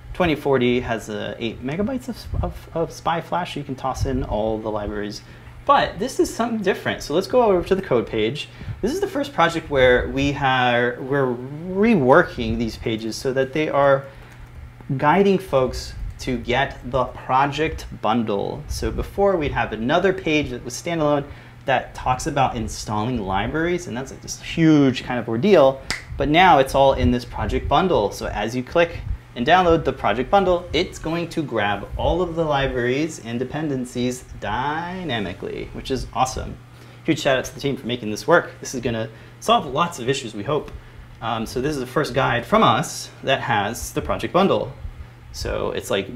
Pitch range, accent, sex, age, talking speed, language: 120-160 Hz, American, male, 30-49, 185 wpm, English